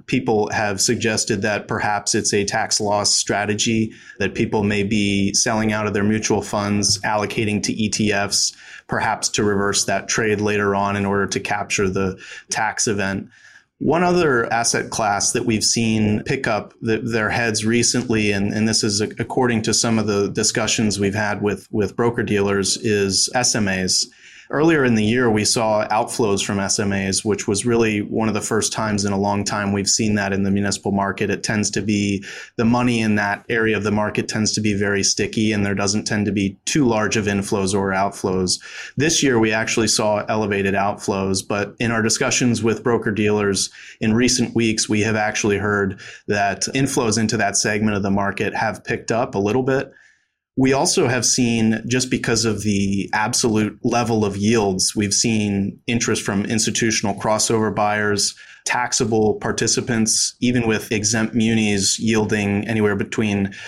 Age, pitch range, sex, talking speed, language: 30-49, 100-115 Hz, male, 175 wpm, English